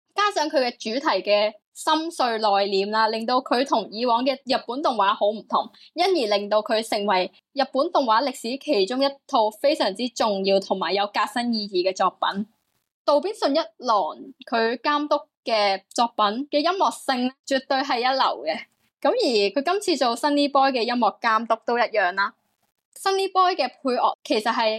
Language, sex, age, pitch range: Chinese, female, 20-39, 215-290 Hz